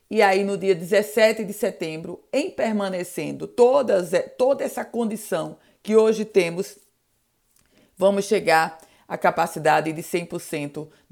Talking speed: 115 wpm